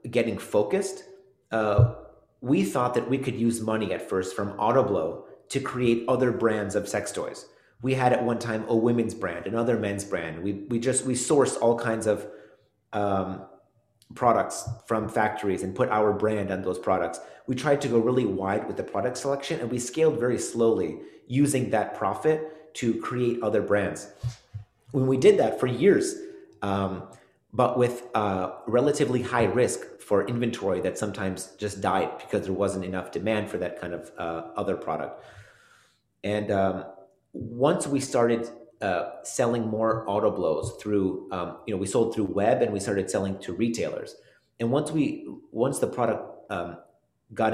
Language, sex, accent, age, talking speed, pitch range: English, male, American, 30-49, 170 wpm, 100-125 Hz